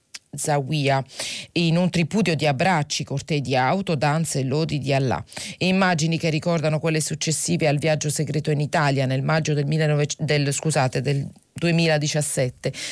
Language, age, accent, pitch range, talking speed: Italian, 40-59, native, 140-170 Hz, 145 wpm